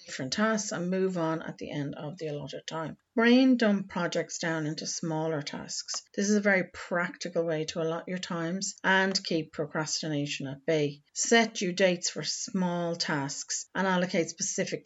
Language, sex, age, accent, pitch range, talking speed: English, female, 40-59, Irish, 160-195 Hz, 175 wpm